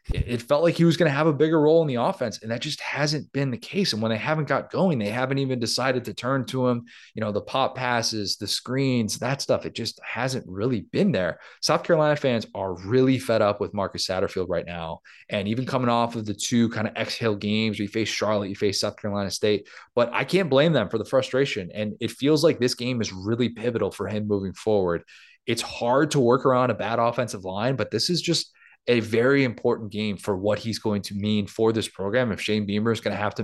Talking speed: 245 wpm